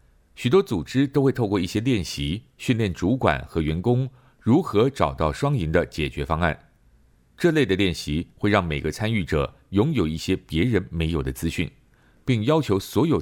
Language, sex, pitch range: Chinese, male, 80-120 Hz